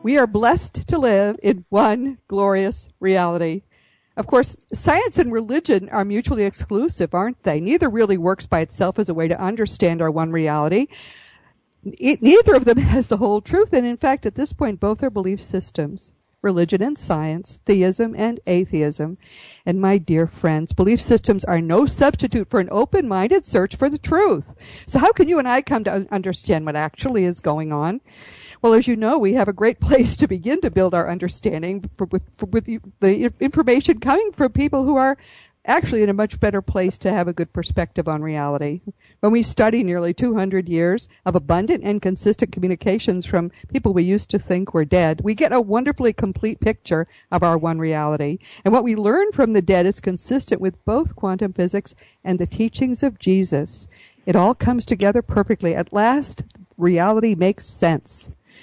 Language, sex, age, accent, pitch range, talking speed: English, female, 50-69, American, 180-240 Hz, 185 wpm